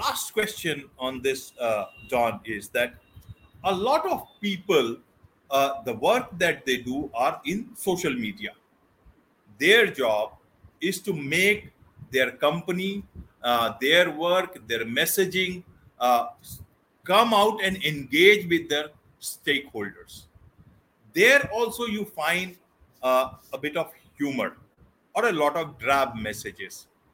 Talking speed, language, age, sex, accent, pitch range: 125 wpm, English, 50-69, male, Indian, 135-220 Hz